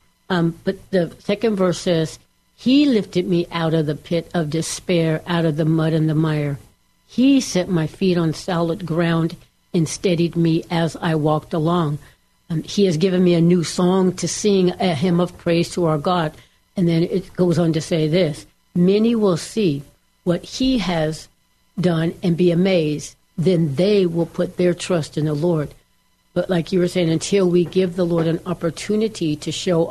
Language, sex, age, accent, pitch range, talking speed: English, female, 60-79, American, 155-180 Hz, 190 wpm